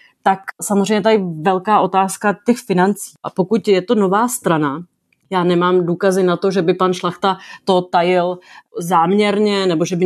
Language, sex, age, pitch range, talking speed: Czech, female, 30-49, 180-225 Hz, 175 wpm